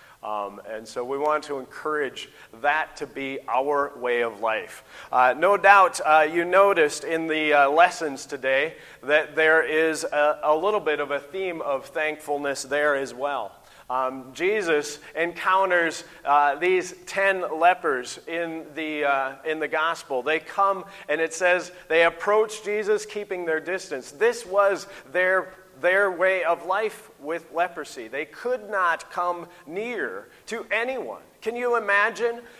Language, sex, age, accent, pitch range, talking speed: English, male, 40-59, American, 155-205 Hz, 155 wpm